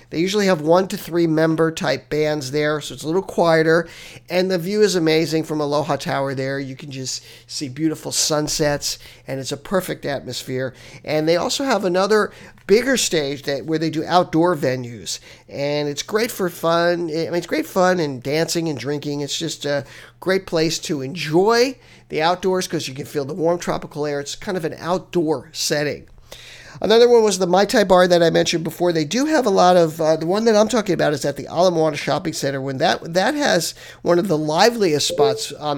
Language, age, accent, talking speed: English, 50-69, American, 210 wpm